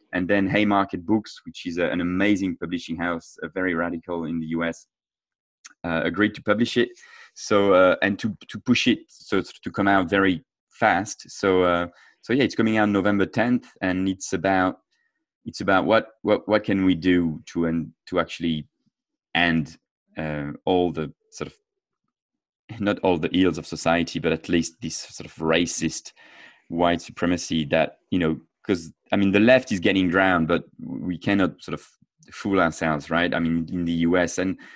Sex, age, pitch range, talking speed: male, 30-49, 85-105 Hz, 180 wpm